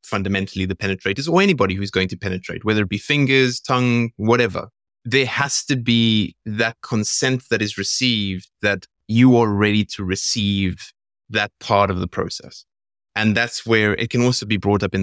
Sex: male